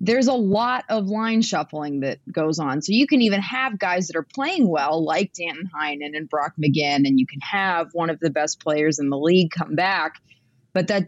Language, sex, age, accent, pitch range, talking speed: English, female, 30-49, American, 145-185 Hz, 220 wpm